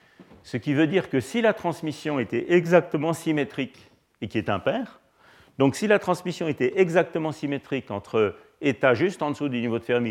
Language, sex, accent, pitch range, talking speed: French, male, French, 100-145 Hz, 185 wpm